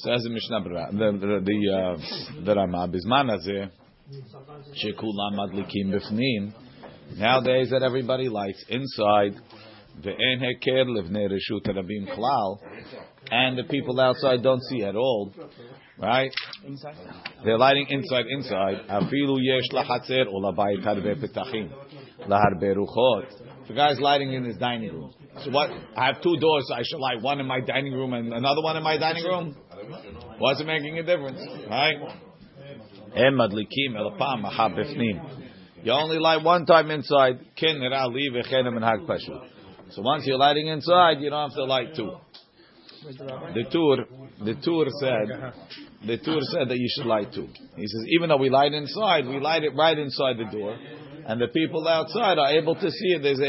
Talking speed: 130 wpm